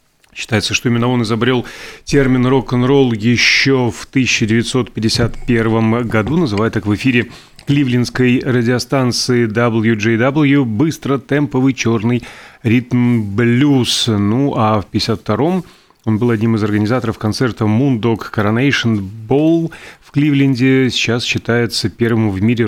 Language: Russian